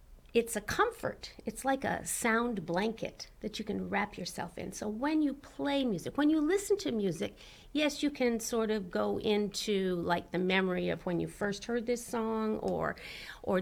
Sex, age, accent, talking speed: female, 50-69, American, 190 wpm